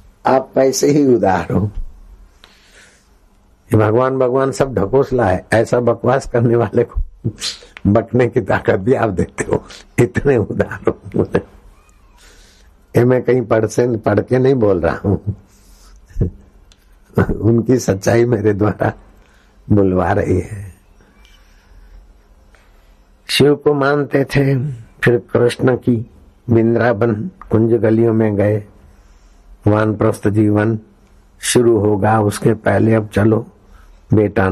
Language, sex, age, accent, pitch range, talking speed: Hindi, male, 60-79, native, 95-115 Hz, 110 wpm